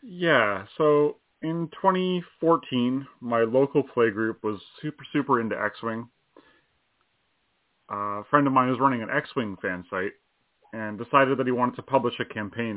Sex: male